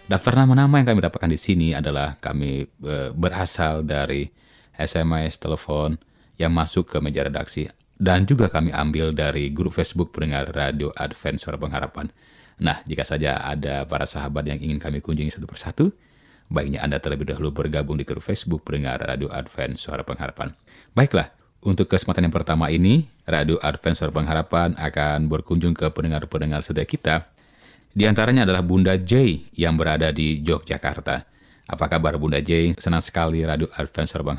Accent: native